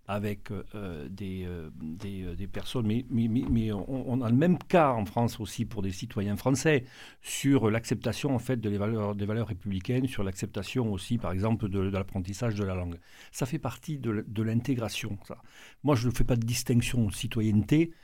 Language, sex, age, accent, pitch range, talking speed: French, male, 50-69, French, 100-120 Hz, 200 wpm